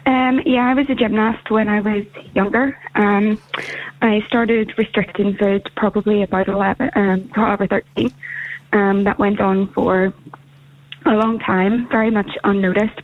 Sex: female